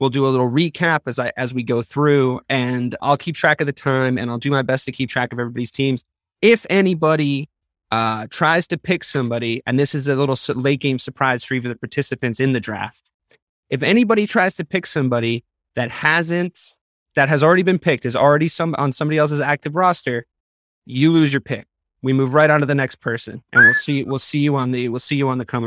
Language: English